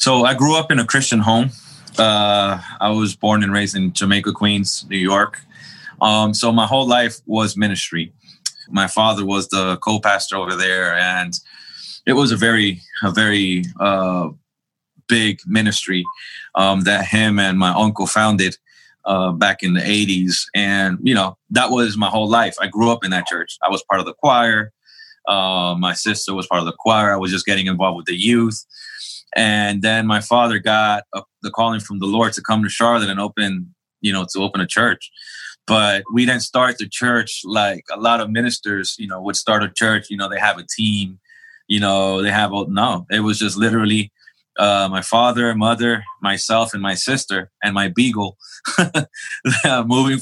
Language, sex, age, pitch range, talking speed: English, male, 20-39, 100-115 Hz, 190 wpm